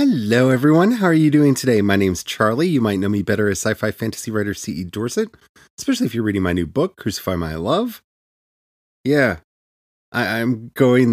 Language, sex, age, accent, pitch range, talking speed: English, male, 30-49, American, 95-130 Hz, 185 wpm